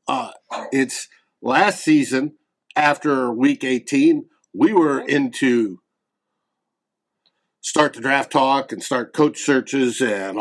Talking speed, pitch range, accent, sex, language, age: 110 wpm, 130-195 Hz, American, male, English, 50-69